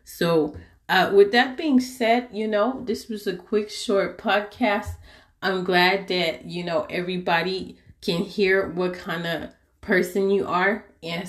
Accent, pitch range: American, 170-205 Hz